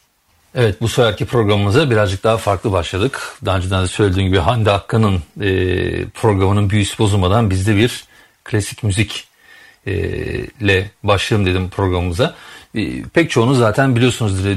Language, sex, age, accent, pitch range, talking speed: Turkish, male, 40-59, native, 95-115 Hz, 135 wpm